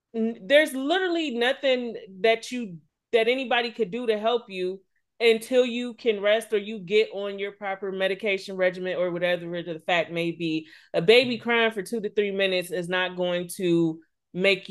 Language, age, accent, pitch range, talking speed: English, 30-49, American, 175-235 Hz, 175 wpm